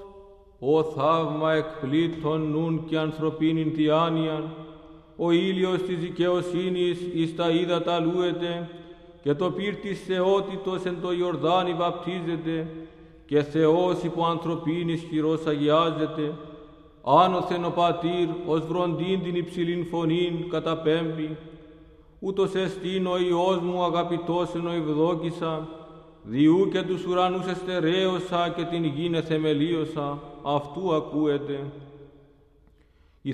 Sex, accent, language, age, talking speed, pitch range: male, Indian, Greek, 50-69, 105 wpm, 160-180 Hz